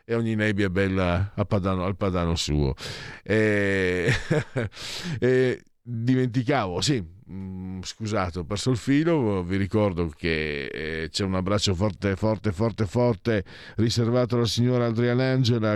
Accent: native